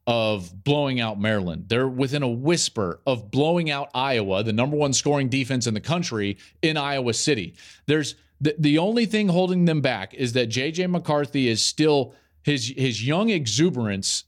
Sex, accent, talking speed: male, American, 170 wpm